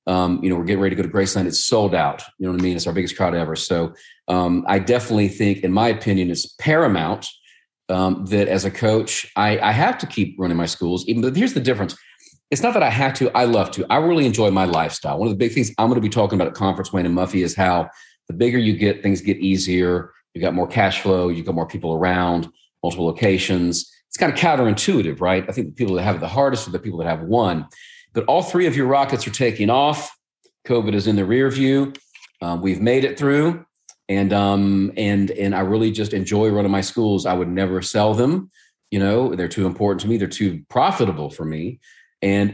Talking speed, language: 240 wpm, English